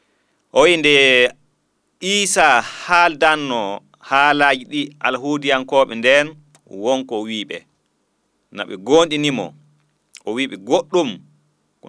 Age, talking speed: 40-59, 115 wpm